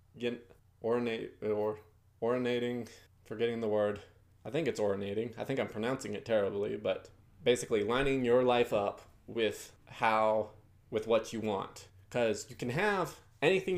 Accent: American